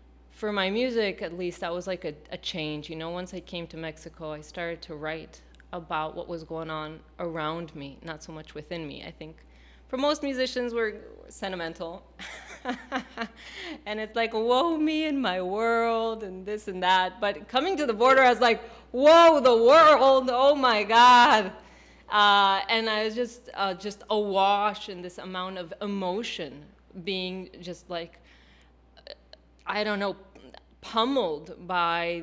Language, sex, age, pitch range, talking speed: English, female, 20-39, 165-230 Hz, 165 wpm